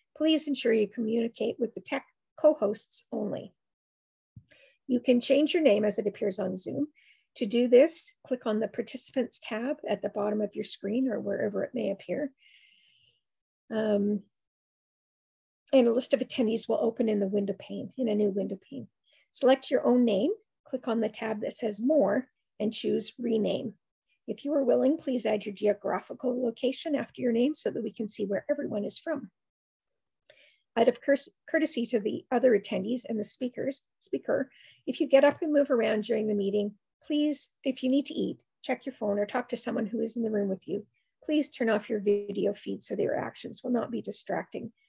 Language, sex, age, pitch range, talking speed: English, female, 50-69, 210-275 Hz, 195 wpm